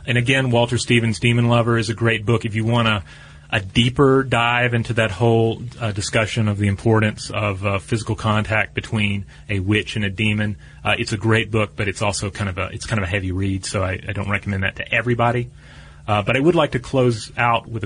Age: 30-49